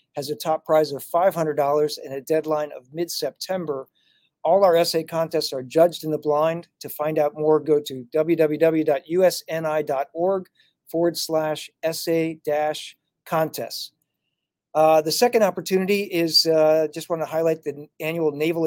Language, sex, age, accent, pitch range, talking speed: English, male, 50-69, American, 155-170 Hz, 140 wpm